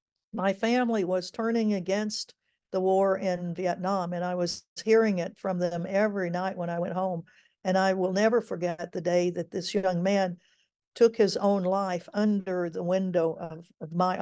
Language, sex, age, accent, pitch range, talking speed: English, female, 60-79, American, 185-215 Hz, 180 wpm